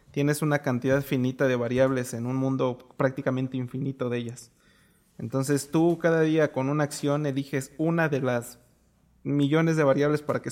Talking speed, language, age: 165 wpm, Spanish, 20-39